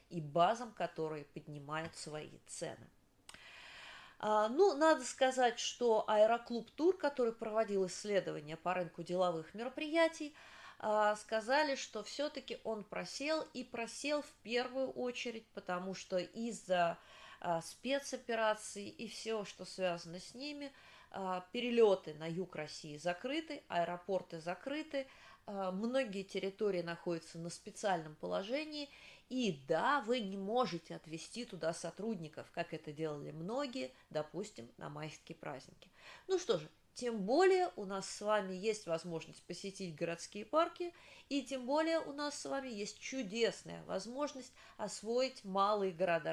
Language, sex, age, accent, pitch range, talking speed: Russian, female, 30-49, native, 175-260 Hz, 130 wpm